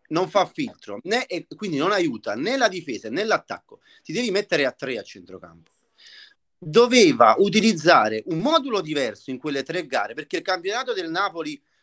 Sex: male